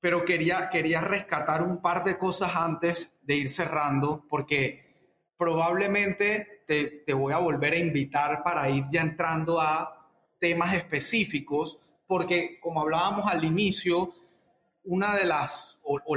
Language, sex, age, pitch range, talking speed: Spanish, male, 30-49, 155-185 Hz, 140 wpm